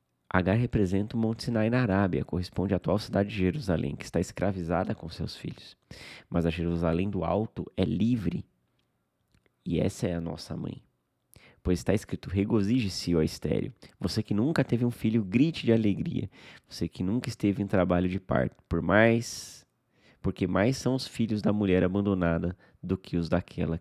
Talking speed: 175 wpm